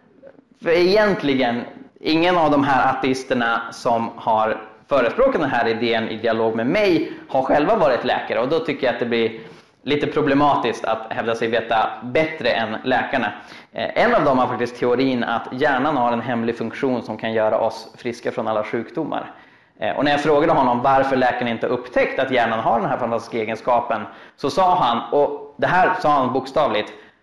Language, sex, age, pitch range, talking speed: Swedish, male, 20-39, 115-165 Hz, 180 wpm